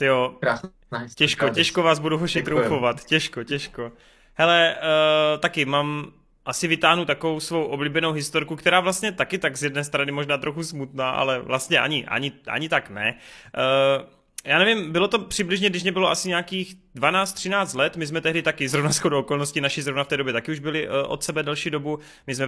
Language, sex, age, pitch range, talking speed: Czech, male, 20-39, 135-165 Hz, 185 wpm